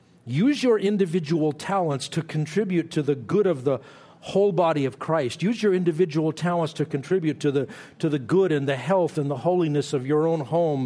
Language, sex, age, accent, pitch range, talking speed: English, male, 60-79, American, 140-190 Hz, 200 wpm